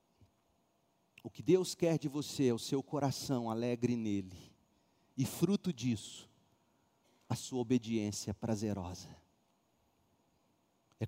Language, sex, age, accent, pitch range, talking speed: Portuguese, male, 40-59, Brazilian, 115-170 Hz, 110 wpm